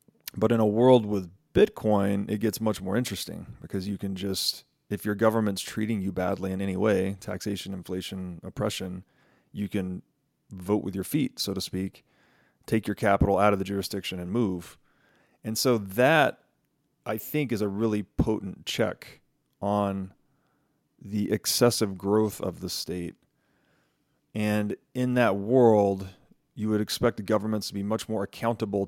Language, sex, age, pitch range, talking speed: English, male, 30-49, 95-115 Hz, 160 wpm